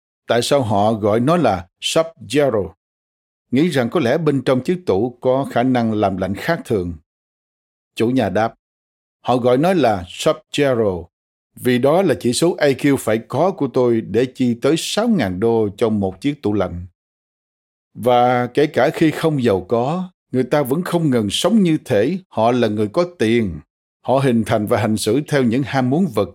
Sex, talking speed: male, 185 wpm